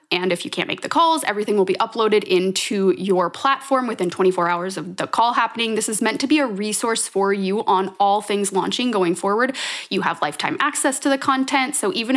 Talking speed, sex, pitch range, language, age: 220 wpm, female, 195-255 Hz, English, 20-39